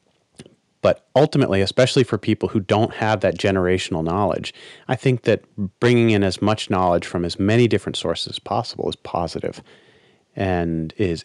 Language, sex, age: English, male, 30-49